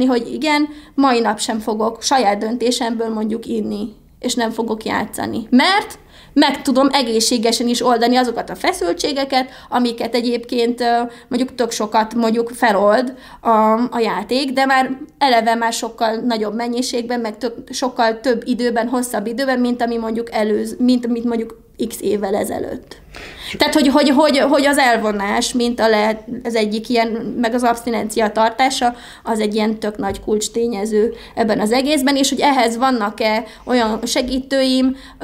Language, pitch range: Hungarian, 220-255 Hz